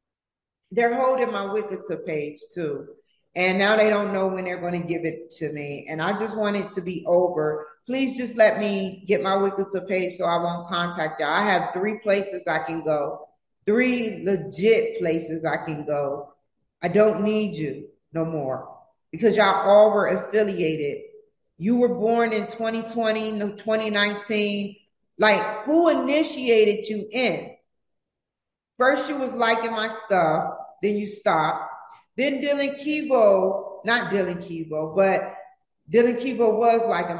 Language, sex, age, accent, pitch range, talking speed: English, female, 40-59, American, 190-245 Hz, 155 wpm